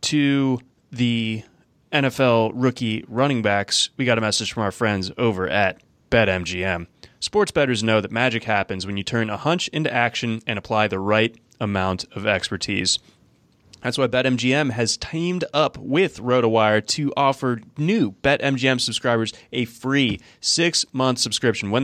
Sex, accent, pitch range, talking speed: male, American, 110-135 Hz, 150 wpm